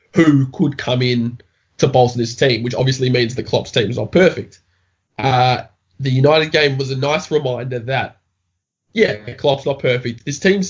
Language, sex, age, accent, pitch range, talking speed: English, male, 20-39, Australian, 115-135 Hz, 180 wpm